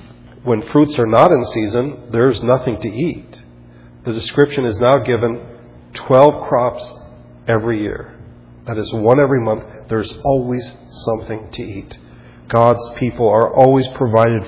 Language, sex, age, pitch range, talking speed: English, male, 40-59, 95-120 Hz, 150 wpm